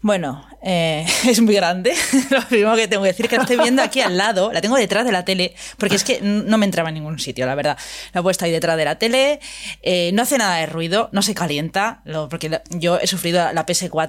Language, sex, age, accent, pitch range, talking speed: Spanish, female, 20-39, Spanish, 170-215 Hz, 260 wpm